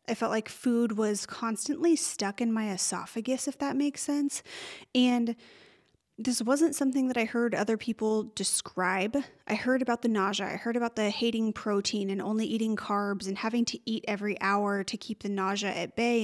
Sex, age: female, 30-49